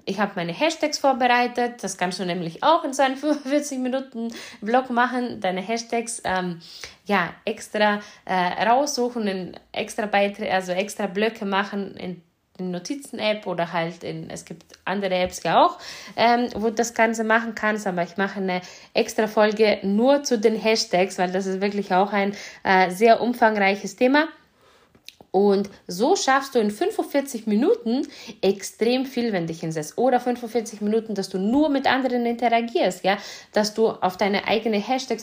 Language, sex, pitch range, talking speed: German, female, 185-245 Hz, 160 wpm